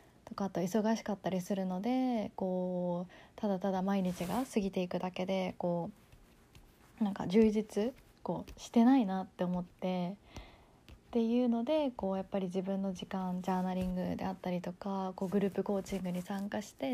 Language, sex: Japanese, female